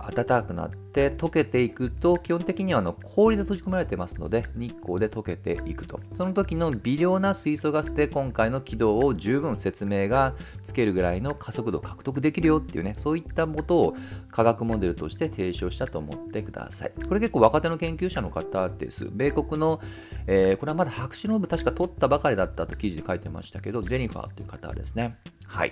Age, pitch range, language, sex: 40-59, 95-155 Hz, Japanese, male